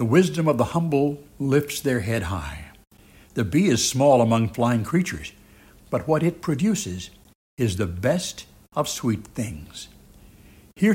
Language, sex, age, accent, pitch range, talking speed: English, male, 60-79, American, 100-140 Hz, 150 wpm